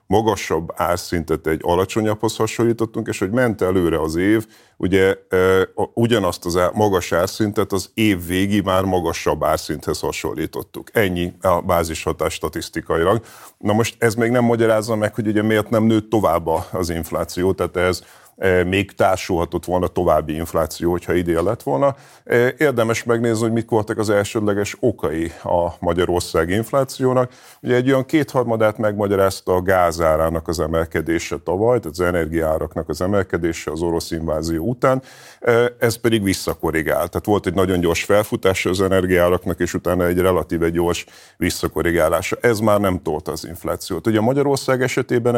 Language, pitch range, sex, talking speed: Hungarian, 90-115 Hz, male, 145 wpm